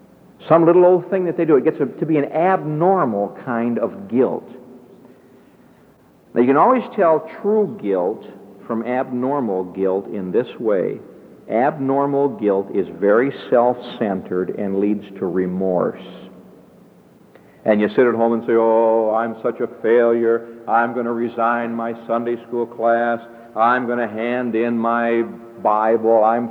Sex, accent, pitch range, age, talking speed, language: male, American, 115-160 Hz, 60-79, 150 wpm, English